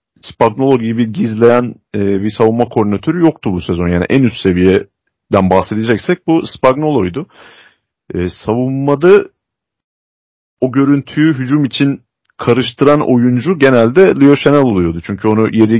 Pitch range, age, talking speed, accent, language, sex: 105-135 Hz, 40-59, 120 wpm, native, Turkish, male